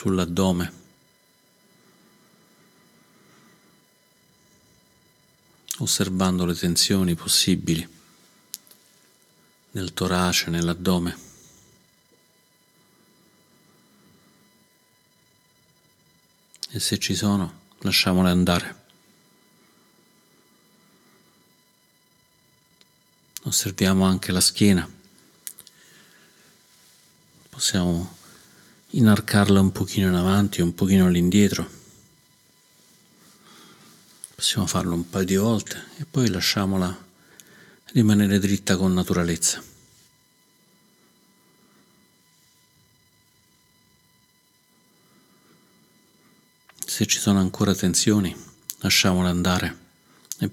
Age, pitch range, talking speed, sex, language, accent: 50-69, 90-100 Hz, 55 wpm, male, Italian, native